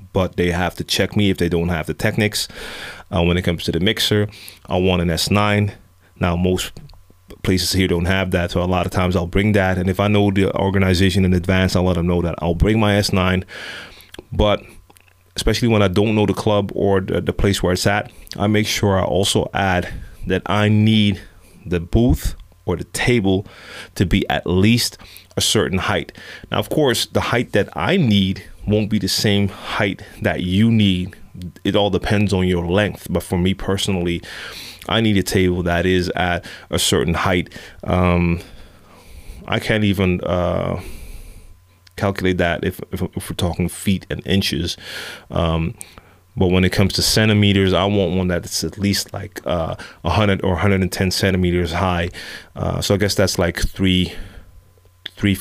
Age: 30-49